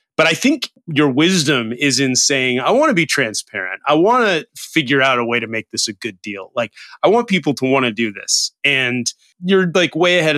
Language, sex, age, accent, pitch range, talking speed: English, male, 30-49, American, 125-165 Hz, 230 wpm